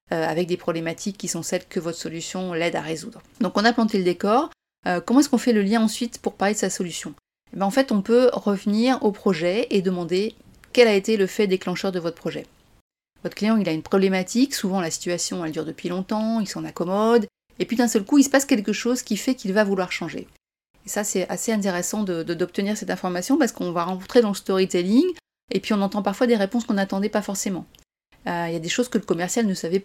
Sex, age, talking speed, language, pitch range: female, 30-49, 240 wpm, French, 185-240 Hz